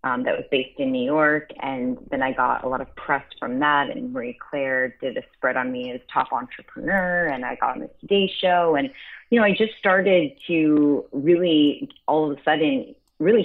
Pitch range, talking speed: 140-200 Hz, 215 wpm